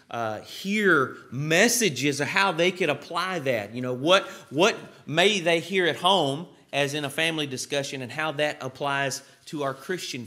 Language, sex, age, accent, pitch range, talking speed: English, male, 30-49, American, 125-165 Hz, 175 wpm